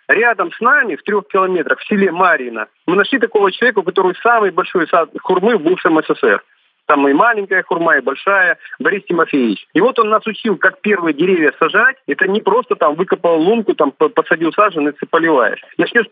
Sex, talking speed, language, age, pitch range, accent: male, 180 wpm, Russian, 40-59, 160-225 Hz, native